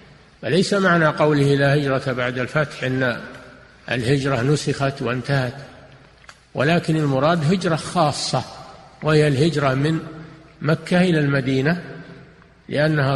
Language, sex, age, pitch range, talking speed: Arabic, male, 50-69, 130-155 Hz, 100 wpm